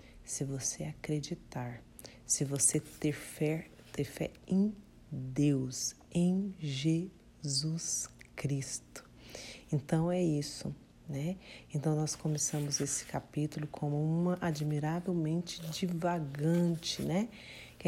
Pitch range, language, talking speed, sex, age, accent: 145-170 Hz, Portuguese, 95 wpm, female, 40-59, Brazilian